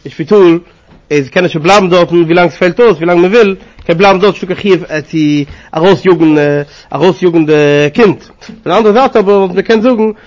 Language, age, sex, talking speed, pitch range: English, 30-49, male, 200 wpm, 160-210 Hz